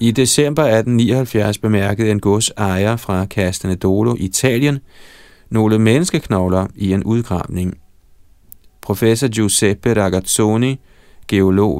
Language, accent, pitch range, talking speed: Danish, native, 90-115 Hz, 95 wpm